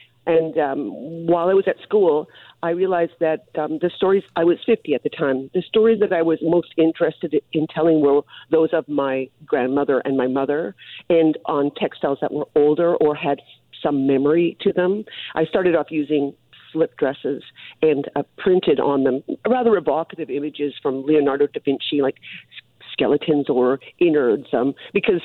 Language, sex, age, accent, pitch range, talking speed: English, female, 50-69, American, 145-185 Hz, 170 wpm